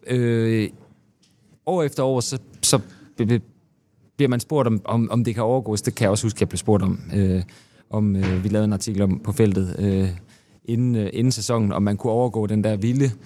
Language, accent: Danish, native